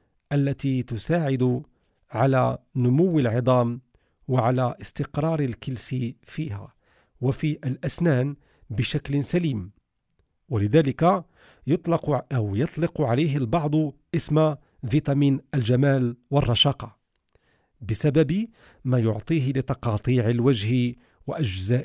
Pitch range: 120-155 Hz